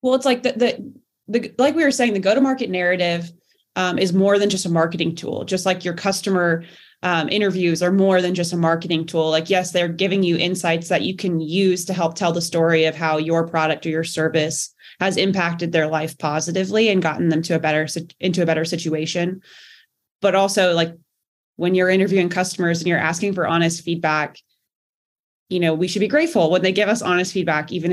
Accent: American